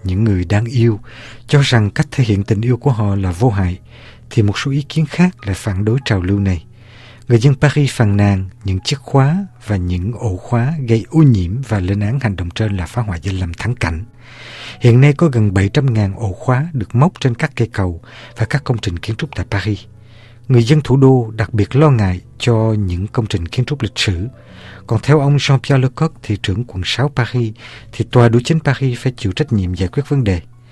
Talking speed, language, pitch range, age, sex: 230 wpm, Vietnamese, 105-130 Hz, 60-79, male